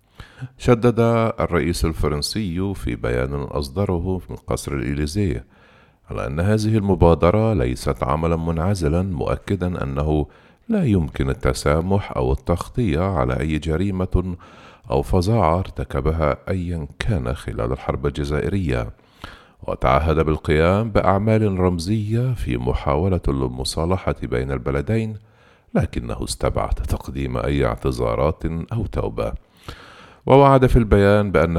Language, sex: Arabic, male